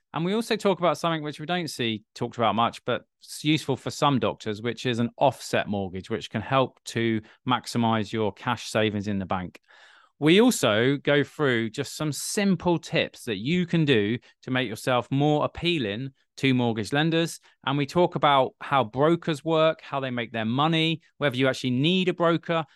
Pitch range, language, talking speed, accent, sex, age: 110-155 Hz, English, 190 wpm, British, male, 20-39